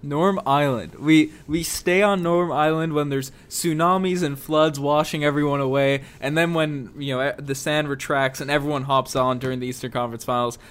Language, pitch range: English, 130-160 Hz